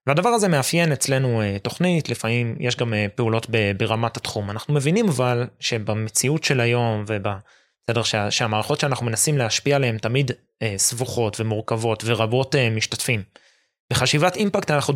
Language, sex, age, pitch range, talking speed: Hebrew, male, 20-39, 110-145 Hz, 125 wpm